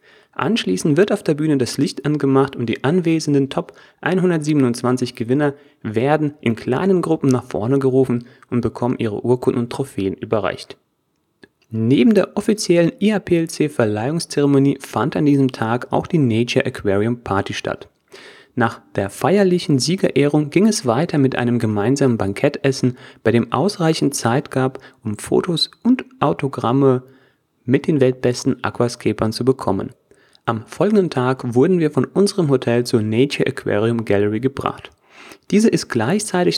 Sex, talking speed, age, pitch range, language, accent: male, 140 wpm, 30-49, 120-155 Hz, German, German